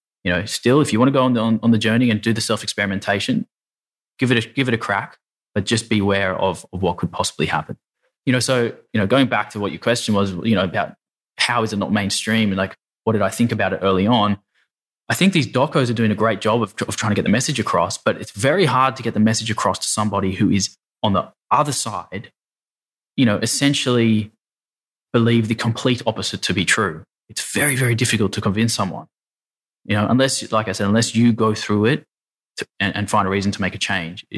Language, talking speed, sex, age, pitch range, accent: English, 240 wpm, male, 20-39, 100-120 Hz, Australian